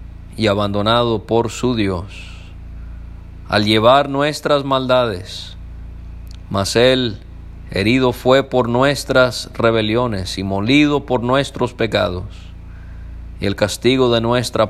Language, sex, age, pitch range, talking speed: English, male, 40-59, 90-125 Hz, 105 wpm